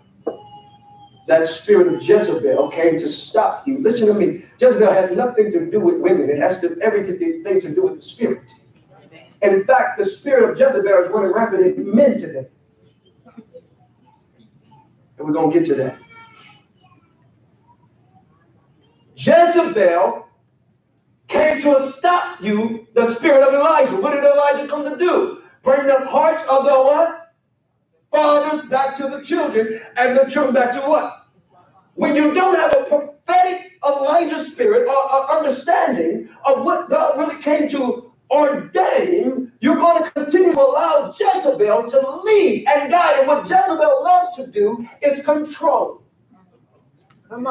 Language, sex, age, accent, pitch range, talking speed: English, male, 50-69, American, 220-345 Hz, 145 wpm